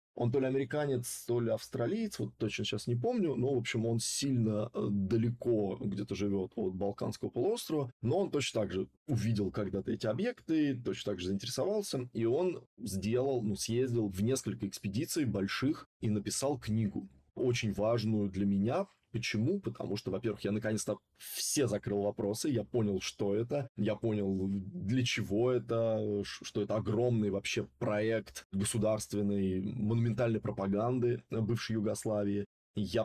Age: 20-39